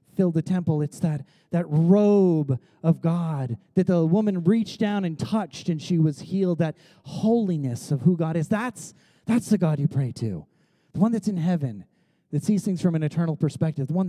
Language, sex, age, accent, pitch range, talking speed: English, male, 30-49, American, 155-205 Hz, 195 wpm